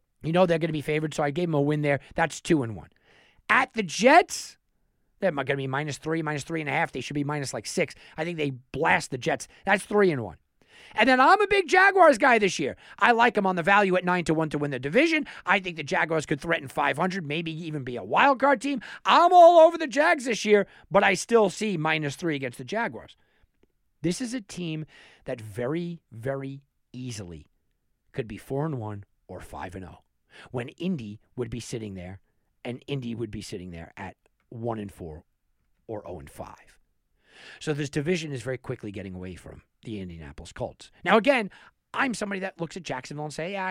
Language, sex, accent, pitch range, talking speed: English, male, American, 115-180 Hz, 215 wpm